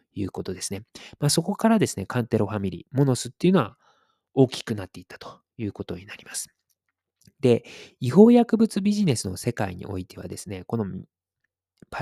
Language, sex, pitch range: Japanese, male, 100-165 Hz